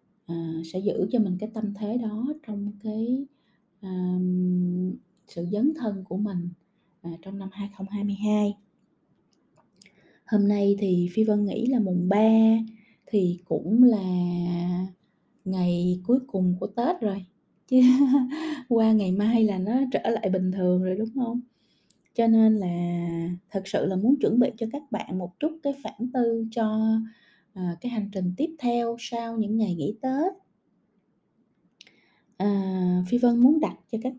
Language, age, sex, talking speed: Vietnamese, 20-39, female, 155 wpm